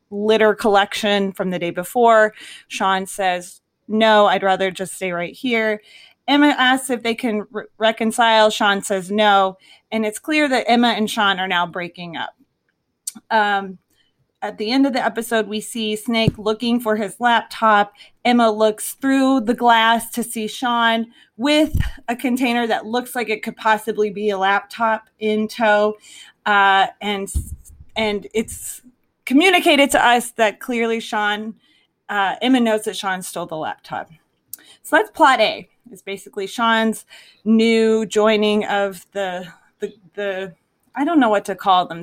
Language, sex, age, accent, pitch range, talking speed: English, female, 30-49, American, 200-240 Hz, 155 wpm